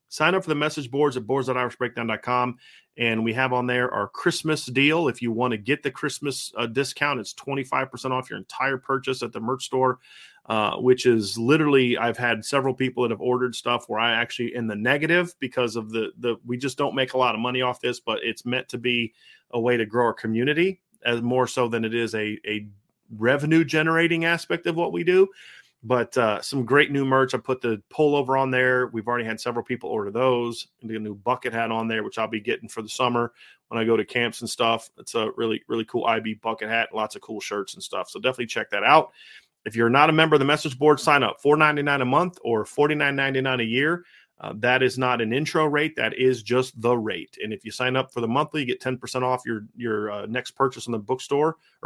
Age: 30-49